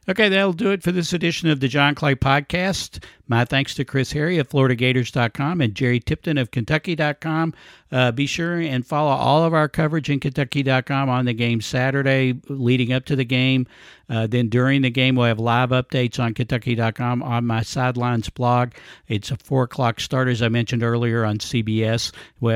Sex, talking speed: male, 185 wpm